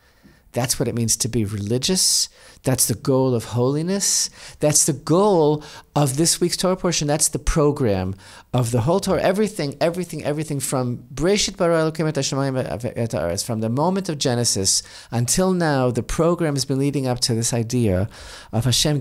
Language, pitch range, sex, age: English, 120-160 Hz, male, 40-59